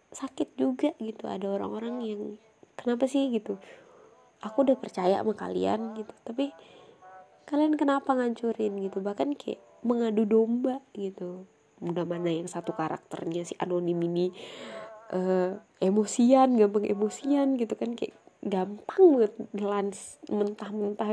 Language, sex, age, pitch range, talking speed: Indonesian, female, 20-39, 190-245 Hz, 120 wpm